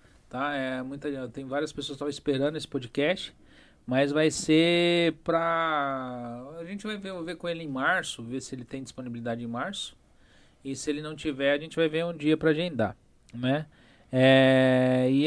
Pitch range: 135-165 Hz